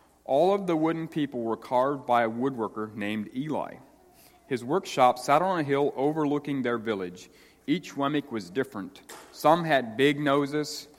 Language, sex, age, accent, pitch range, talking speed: English, male, 40-59, American, 110-145 Hz, 160 wpm